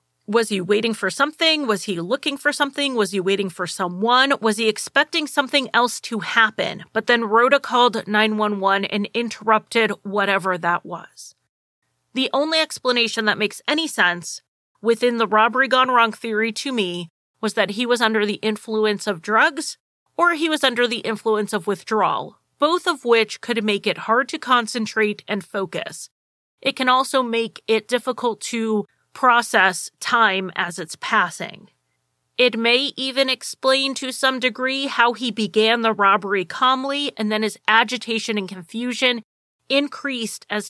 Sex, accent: female, American